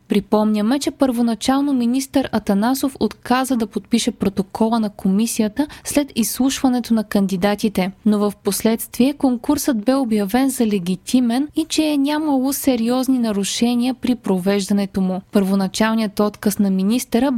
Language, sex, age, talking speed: Bulgarian, female, 20-39, 125 wpm